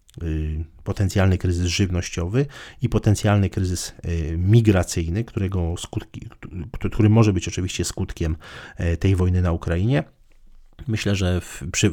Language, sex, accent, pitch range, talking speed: Polish, male, native, 85-105 Hz, 110 wpm